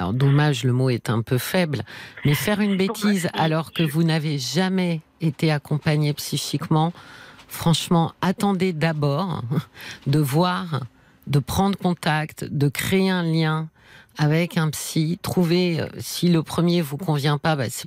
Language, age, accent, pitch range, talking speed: French, 50-69, French, 145-180 Hz, 150 wpm